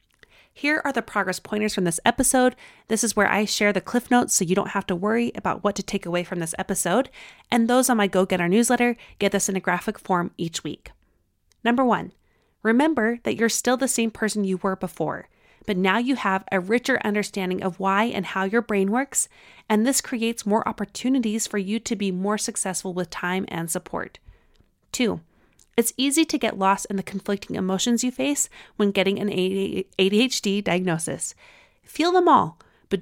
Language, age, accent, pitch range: English, 30-49, American, 190-240 Hz